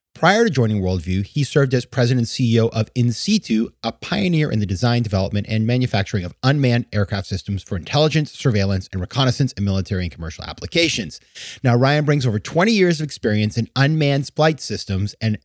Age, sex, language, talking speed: 30-49, male, English, 185 wpm